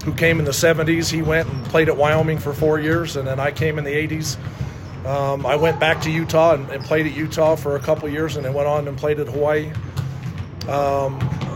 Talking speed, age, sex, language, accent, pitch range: 240 wpm, 40-59, male, English, American, 135-155 Hz